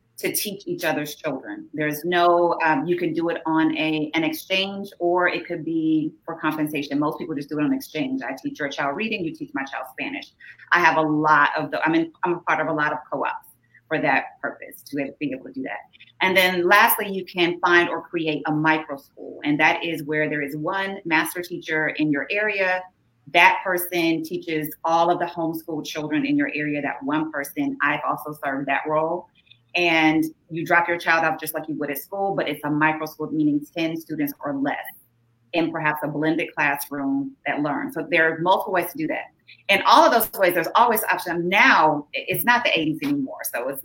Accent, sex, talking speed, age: American, female, 220 wpm, 30-49